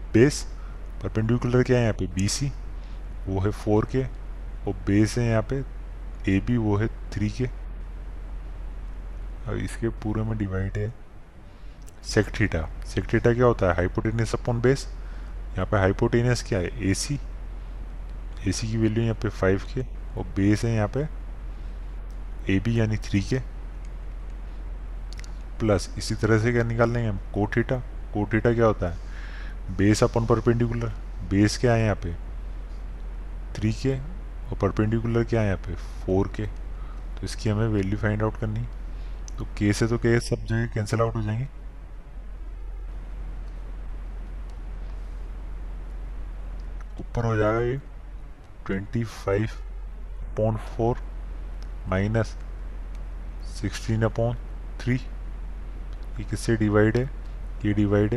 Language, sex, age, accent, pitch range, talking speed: Hindi, male, 20-39, native, 95-115 Hz, 125 wpm